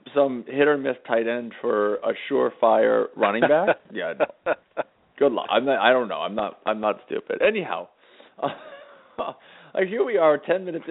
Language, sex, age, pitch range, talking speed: English, male, 40-59, 110-150 Hz, 165 wpm